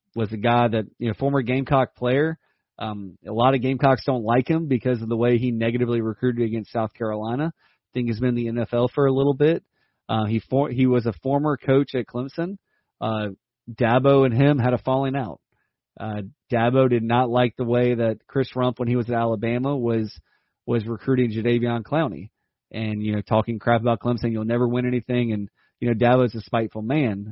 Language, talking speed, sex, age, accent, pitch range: English, 205 wpm, male, 30-49, American, 110-130 Hz